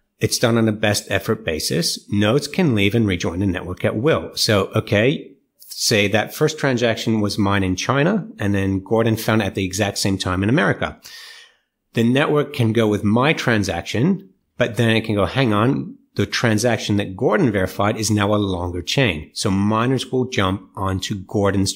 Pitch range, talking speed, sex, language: 100-125 Hz, 190 wpm, male, English